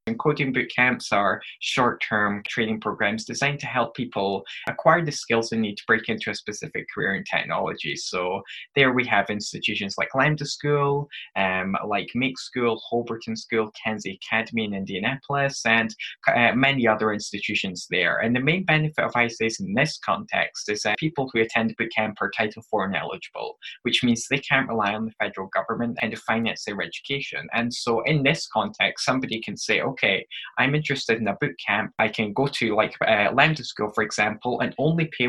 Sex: male